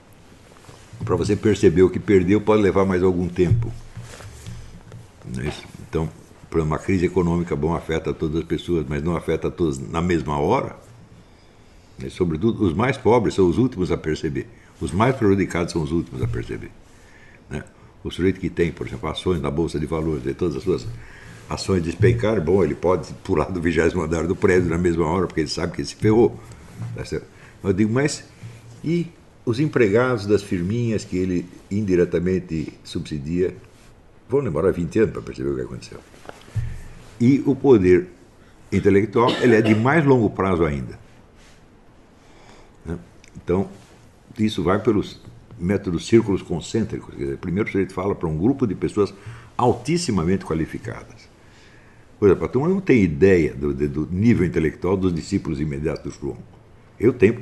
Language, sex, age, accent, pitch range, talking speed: Portuguese, male, 60-79, Brazilian, 85-110 Hz, 155 wpm